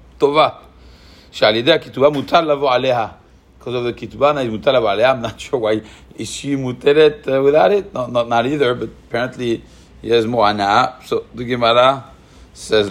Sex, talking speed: male, 145 wpm